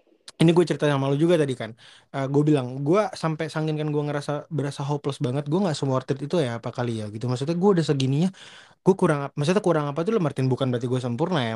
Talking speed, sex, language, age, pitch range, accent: 245 wpm, male, Indonesian, 20-39, 120-160 Hz, native